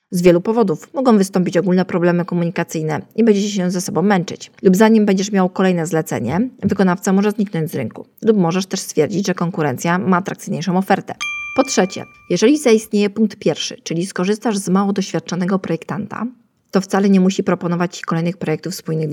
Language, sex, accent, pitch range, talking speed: Polish, female, native, 170-205 Hz, 175 wpm